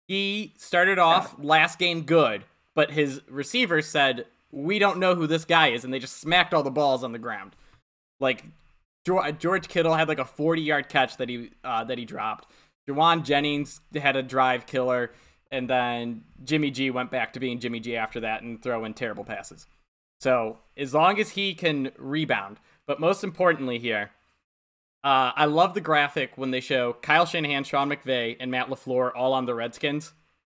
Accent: American